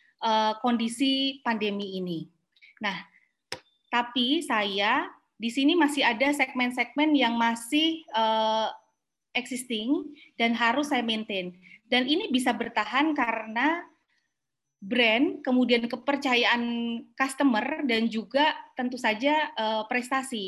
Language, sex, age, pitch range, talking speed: Indonesian, female, 20-39, 220-280 Hz, 105 wpm